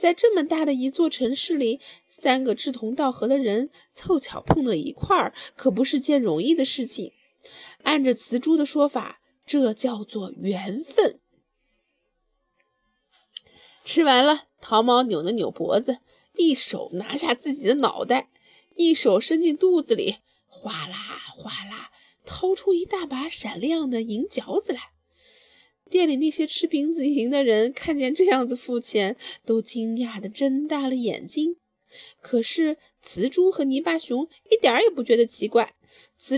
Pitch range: 240-330 Hz